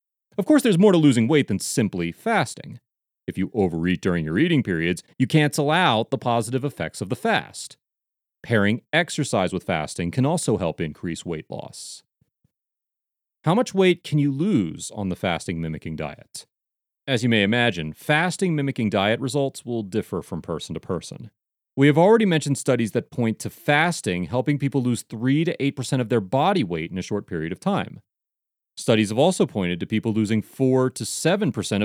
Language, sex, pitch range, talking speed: English, male, 105-155 Hz, 175 wpm